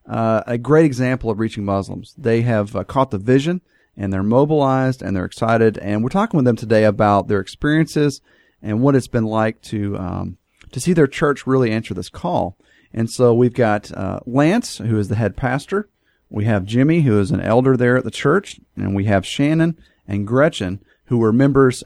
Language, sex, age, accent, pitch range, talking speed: English, male, 40-59, American, 105-135 Hz, 205 wpm